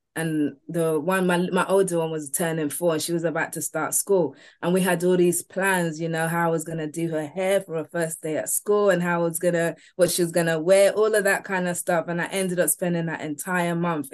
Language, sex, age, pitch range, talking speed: English, female, 20-39, 165-190 Hz, 270 wpm